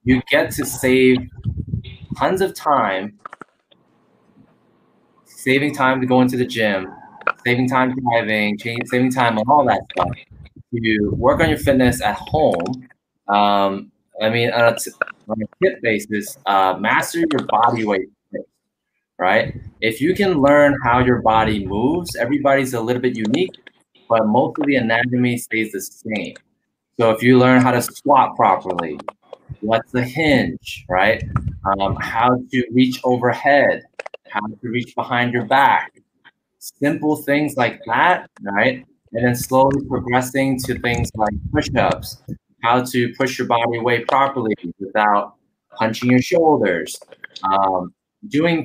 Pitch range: 110-130 Hz